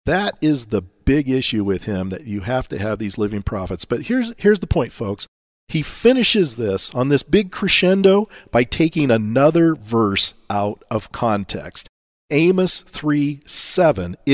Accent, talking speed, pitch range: American, 155 wpm, 115-180 Hz